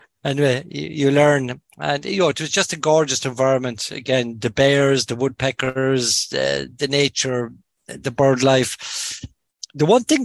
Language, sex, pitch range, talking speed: English, male, 125-145 Hz, 165 wpm